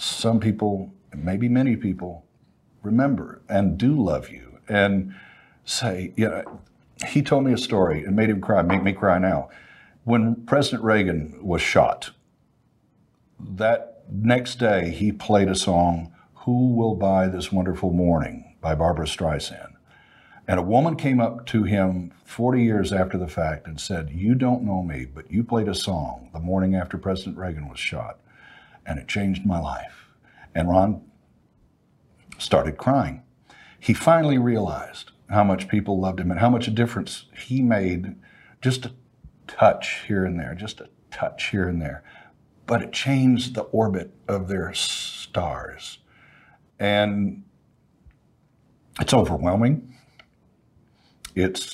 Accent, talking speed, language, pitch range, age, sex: American, 145 wpm, English, 95-115 Hz, 60-79, male